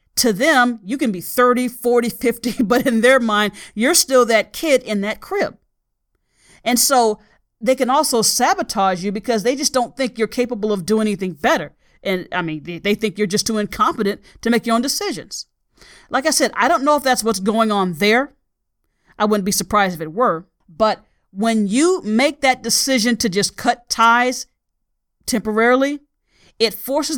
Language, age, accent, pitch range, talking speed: English, 40-59, American, 205-255 Hz, 185 wpm